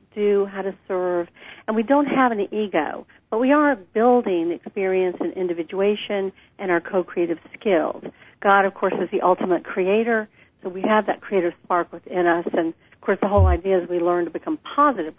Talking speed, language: 190 wpm, English